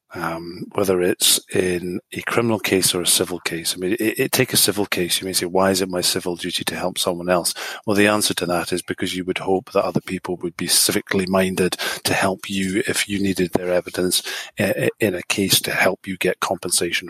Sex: male